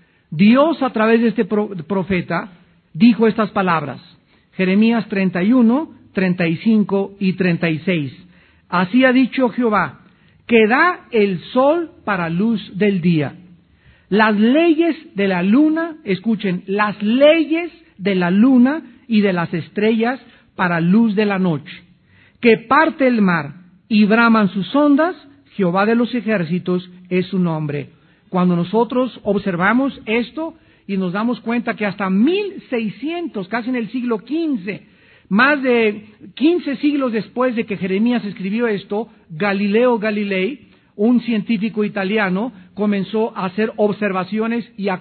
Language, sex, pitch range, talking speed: Spanish, male, 185-250 Hz, 130 wpm